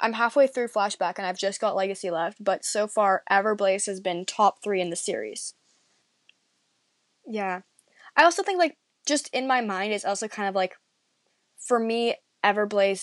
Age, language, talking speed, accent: 20-39, English, 175 wpm, American